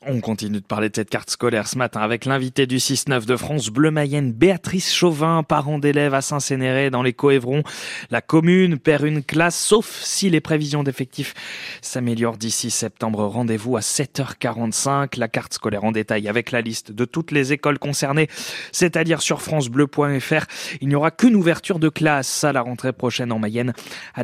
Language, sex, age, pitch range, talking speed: French, male, 20-39, 125-160 Hz, 185 wpm